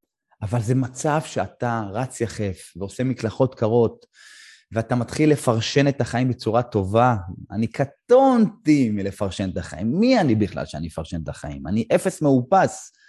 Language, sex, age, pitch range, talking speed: Hebrew, male, 30-49, 100-145 Hz, 140 wpm